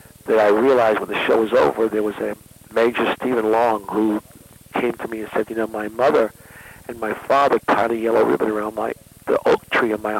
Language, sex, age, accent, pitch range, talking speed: English, male, 60-79, American, 110-135 Hz, 220 wpm